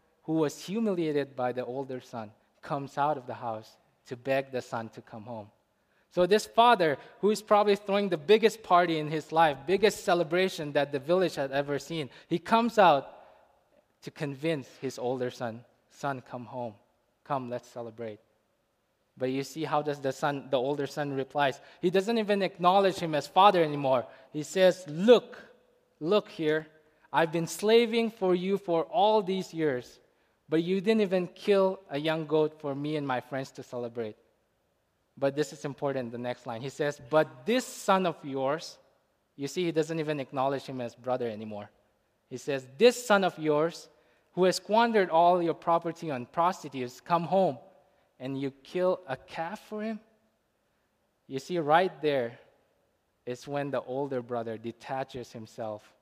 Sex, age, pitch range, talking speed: male, 20-39, 130-180 Hz, 170 wpm